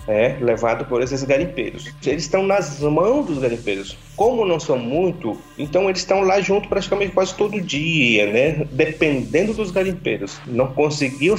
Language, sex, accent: Portuguese, male, Brazilian